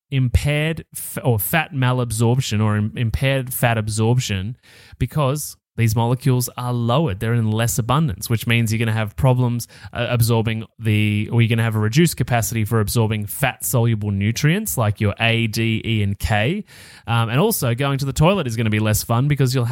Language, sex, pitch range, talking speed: English, male, 110-145 Hz, 185 wpm